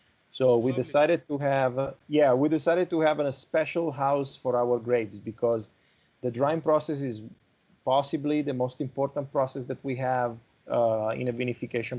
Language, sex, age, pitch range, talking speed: Dutch, male, 30-49, 115-140 Hz, 170 wpm